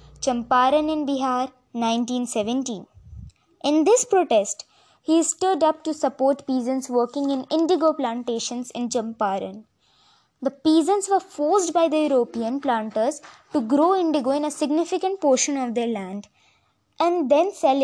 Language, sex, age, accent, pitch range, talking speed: Hindi, female, 20-39, native, 240-310 Hz, 140 wpm